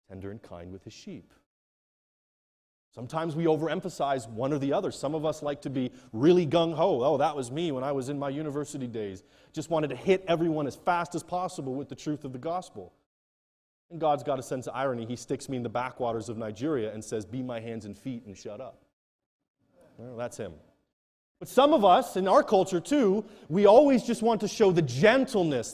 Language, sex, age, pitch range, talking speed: English, male, 30-49, 125-175 Hz, 210 wpm